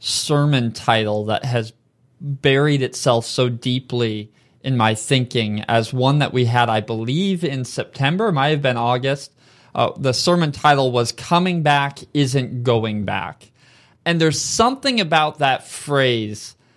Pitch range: 125-155 Hz